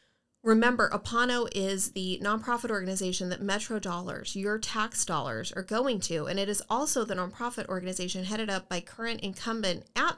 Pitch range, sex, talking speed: 185-220 Hz, female, 165 wpm